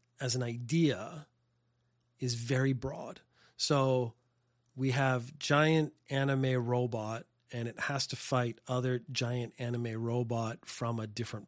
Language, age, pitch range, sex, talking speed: English, 30-49, 120-150 Hz, male, 125 wpm